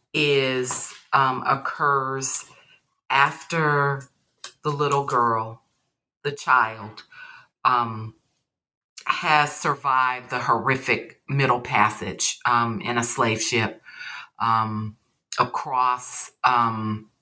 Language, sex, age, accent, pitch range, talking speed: English, female, 40-59, American, 120-145 Hz, 85 wpm